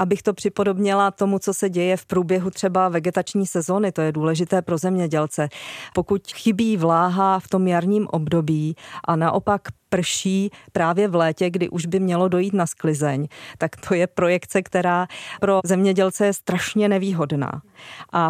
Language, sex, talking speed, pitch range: Czech, female, 155 wpm, 165-185 Hz